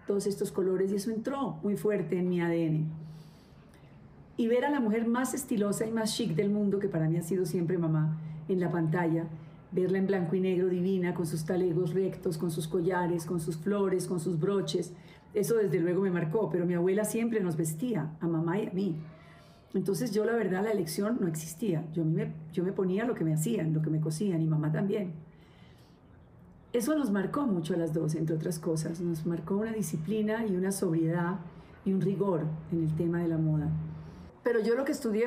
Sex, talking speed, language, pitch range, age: female, 210 wpm, Spanish, 165-205 Hz, 40-59